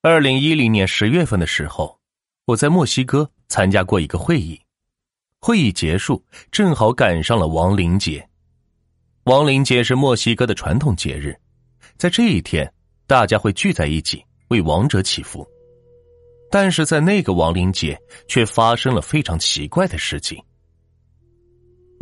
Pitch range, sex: 90-135 Hz, male